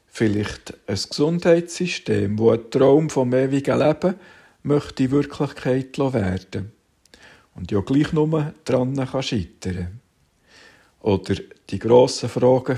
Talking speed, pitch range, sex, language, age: 110 wpm, 105-140 Hz, male, German, 50-69